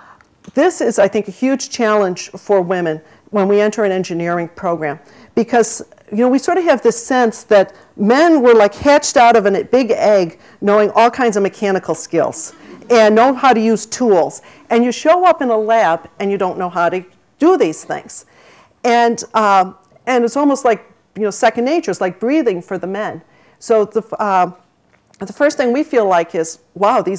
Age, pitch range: 50-69, 185-235 Hz